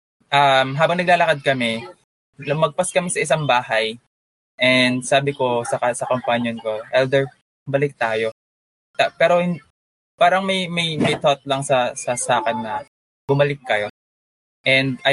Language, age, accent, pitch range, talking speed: Filipino, 20-39, native, 115-140 Hz, 140 wpm